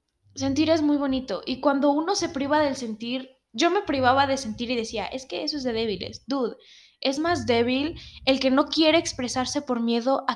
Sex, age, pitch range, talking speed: female, 10-29, 215-280 Hz, 210 wpm